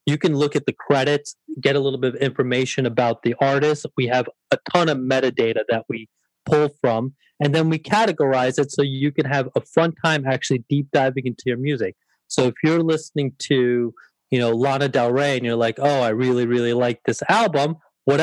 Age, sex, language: 30-49, male, English